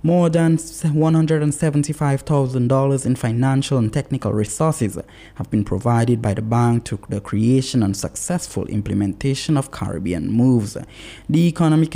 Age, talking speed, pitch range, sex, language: 20-39, 125 wpm, 110-140 Hz, male, English